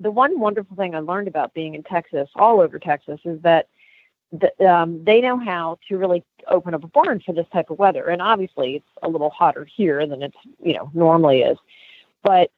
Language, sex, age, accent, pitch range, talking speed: English, female, 40-59, American, 155-195 Hz, 215 wpm